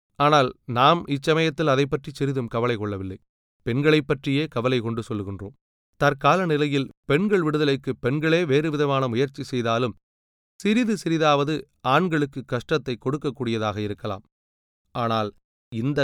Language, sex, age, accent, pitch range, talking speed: Tamil, male, 30-49, native, 115-150 Hz, 110 wpm